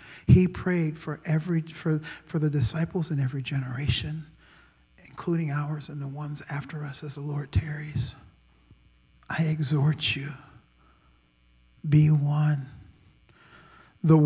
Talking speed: 120 wpm